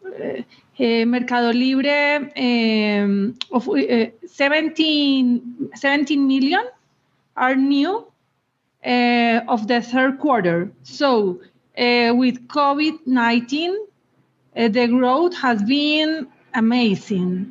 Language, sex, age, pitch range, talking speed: English, female, 40-59, 235-280 Hz, 95 wpm